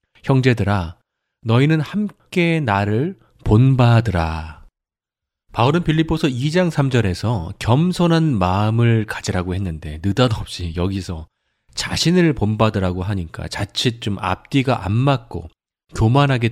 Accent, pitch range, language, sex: native, 95-140 Hz, Korean, male